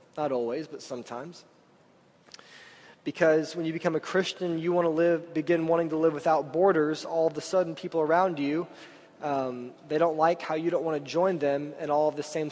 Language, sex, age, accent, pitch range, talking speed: English, male, 20-39, American, 145-170 Hz, 205 wpm